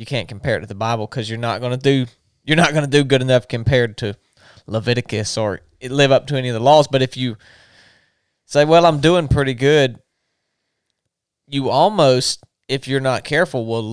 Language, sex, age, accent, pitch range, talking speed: English, male, 20-39, American, 110-135 Hz, 205 wpm